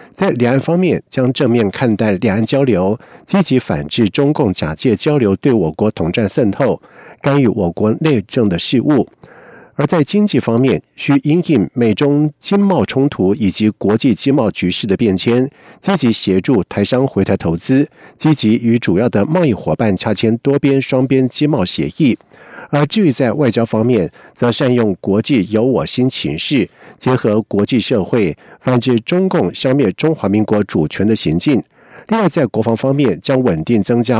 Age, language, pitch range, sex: 50-69, German, 105-140 Hz, male